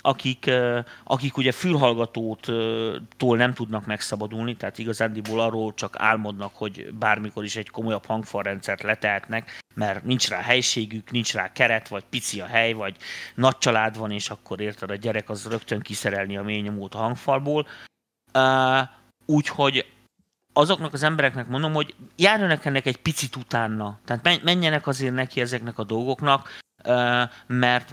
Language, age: Hungarian, 30-49